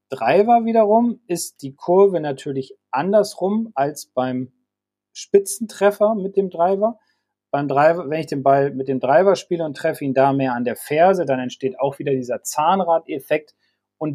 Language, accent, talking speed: German, German, 160 wpm